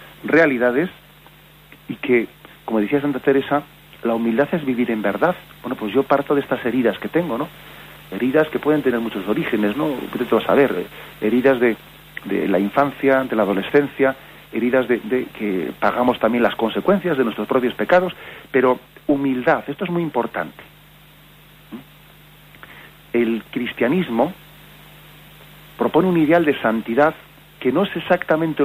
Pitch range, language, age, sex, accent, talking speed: 120-155 Hz, Spanish, 40-59, male, Spanish, 145 wpm